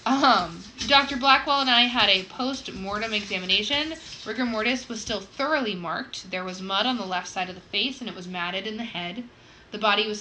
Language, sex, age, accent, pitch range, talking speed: English, female, 20-39, American, 185-225 Hz, 205 wpm